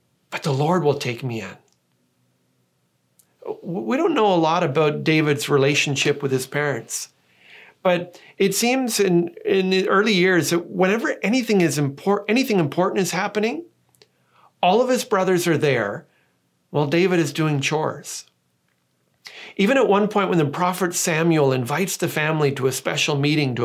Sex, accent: male, American